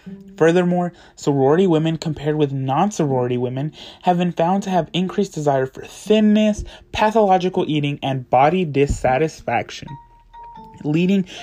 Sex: male